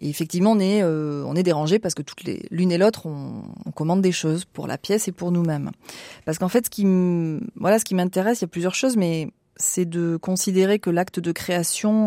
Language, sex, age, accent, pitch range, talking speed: French, female, 30-49, French, 160-200 Hz, 240 wpm